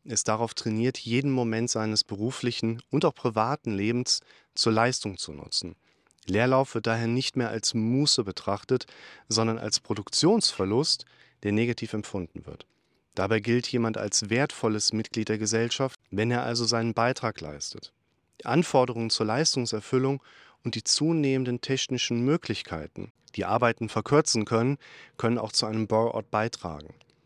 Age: 40-59